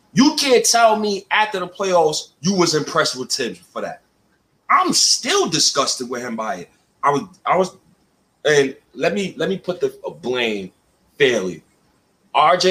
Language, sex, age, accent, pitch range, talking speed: English, male, 30-49, American, 140-220 Hz, 165 wpm